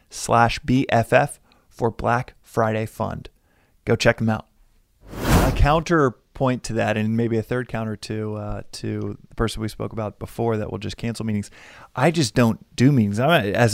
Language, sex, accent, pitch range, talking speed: English, male, American, 105-125 Hz, 170 wpm